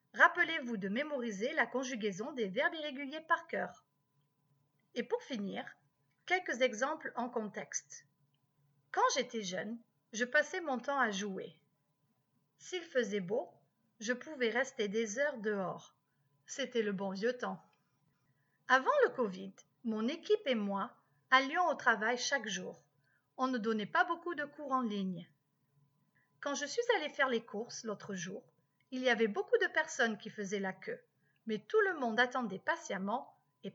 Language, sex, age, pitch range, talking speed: French, female, 40-59, 200-285 Hz, 155 wpm